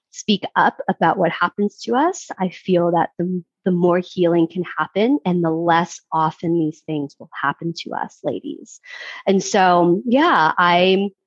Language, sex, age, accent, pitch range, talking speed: English, female, 30-49, American, 165-195 Hz, 165 wpm